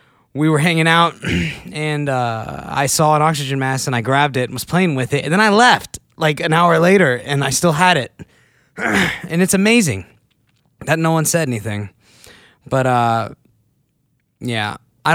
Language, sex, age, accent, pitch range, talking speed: English, male, 20-39, American, 120-170 Hz, 180 wpm